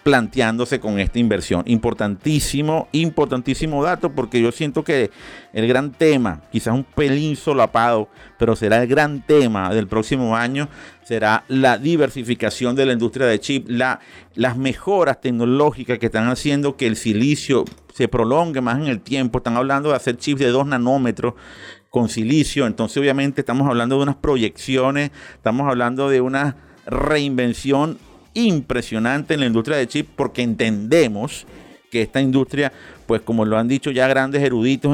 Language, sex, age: Spanish, male, 50-69